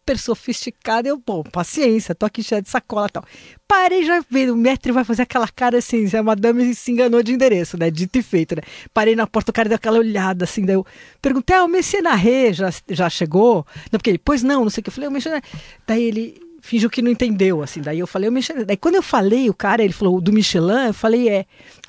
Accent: Brazilian